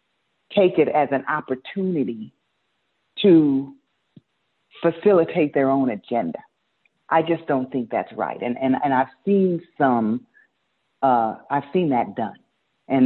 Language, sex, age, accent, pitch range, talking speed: English, female, 40-59, American, 120-160 Hz, 130 wpm